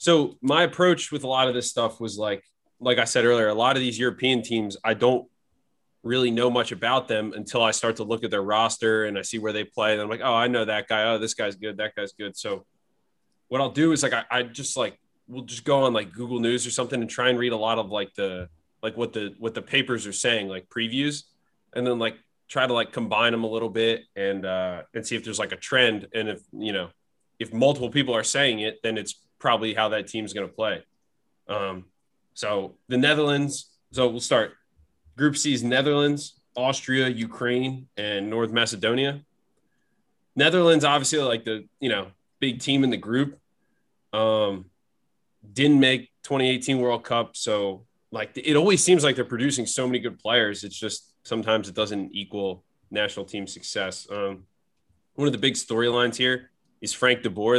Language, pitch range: English, 110-130 Hz